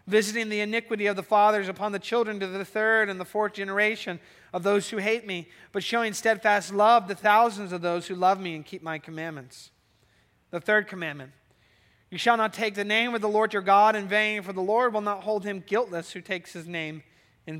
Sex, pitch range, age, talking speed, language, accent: male, 160-215 Hz, 30-49, 220 wpm, English, American